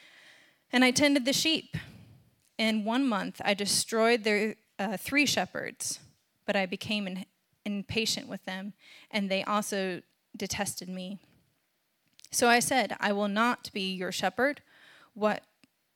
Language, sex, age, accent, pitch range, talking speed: English, female, 20-39, American, 195-245 Hz, 135 wpm